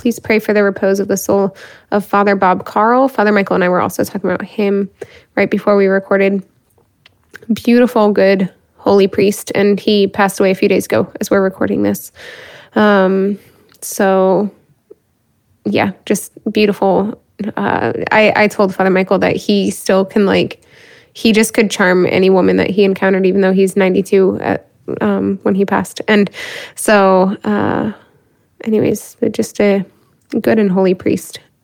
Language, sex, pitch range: English, female, 195-225 Hz